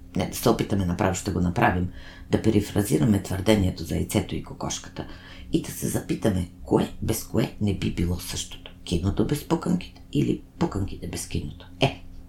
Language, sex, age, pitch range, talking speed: Bulgarian, female, 50-69, 90-105 Hz, 165 wpm